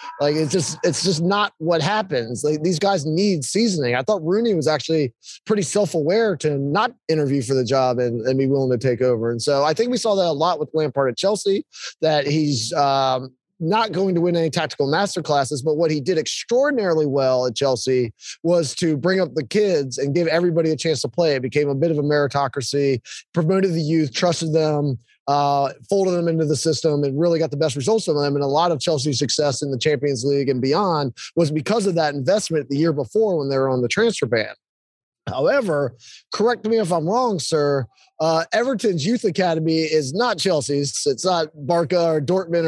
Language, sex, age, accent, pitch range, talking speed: English, male, 20-39, American, 140-185 Hz, 210 wpm